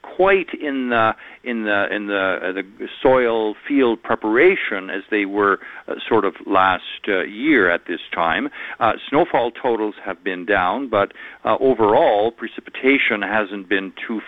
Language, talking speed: English, 155 wpm